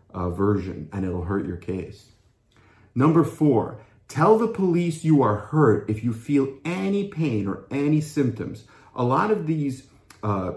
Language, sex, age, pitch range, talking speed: English, male, 30-49, 105-135 Hz, 160 wpm